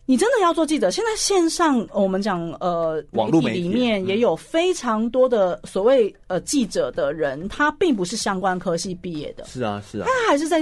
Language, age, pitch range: Chinese, 30-49, 180-265 Hz